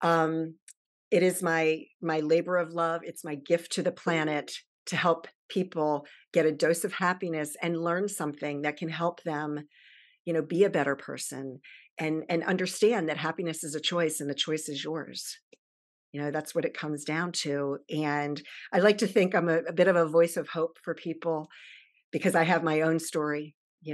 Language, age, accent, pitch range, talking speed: English, 50-69, American, 150-170 Hz, 200 wpm